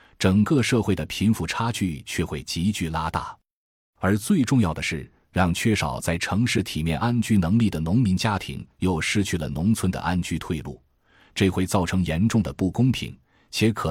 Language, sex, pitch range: Chinese, male, 80-115 Hz